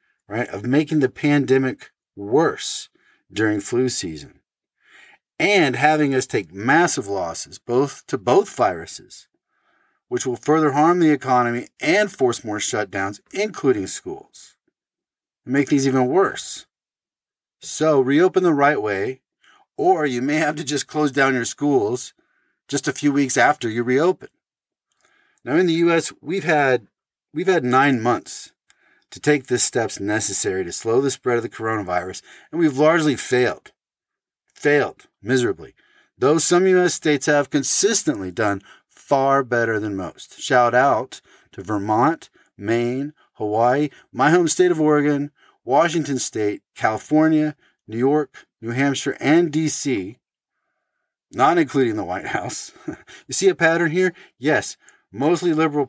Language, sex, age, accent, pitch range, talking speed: English, male, 40-59, American, 120-155 Hz, 140 wpm